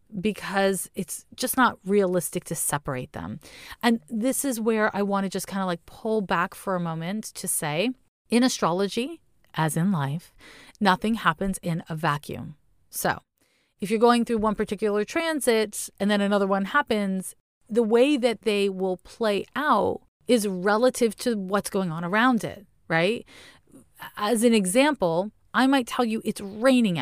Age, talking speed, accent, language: 30-49, 165 wpm, American, English